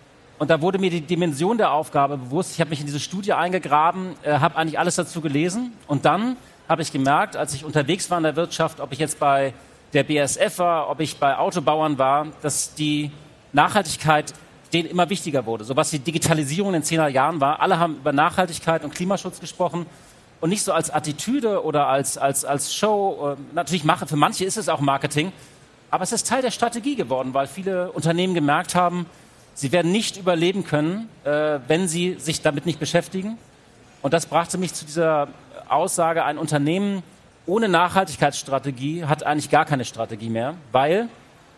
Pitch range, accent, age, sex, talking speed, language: 145-180 Hz, German, 40-59, male, 180 wpm, German